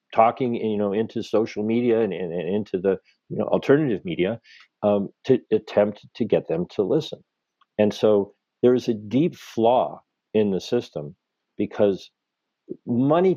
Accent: American